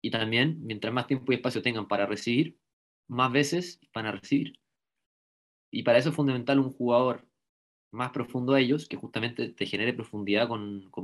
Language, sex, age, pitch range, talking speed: English, male, 20-39, 110-135 Hz, 180 wpm